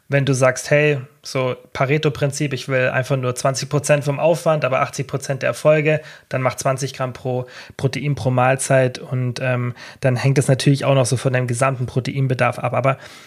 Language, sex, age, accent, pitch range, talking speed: German, male, 30-49, German, 130-155 Hz, 180 wpm